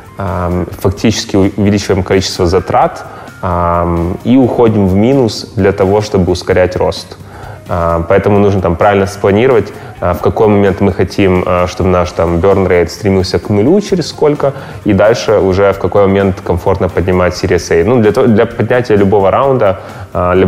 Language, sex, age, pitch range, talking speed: Russian, male, 20-39, 90-105 Hz, 145 wpm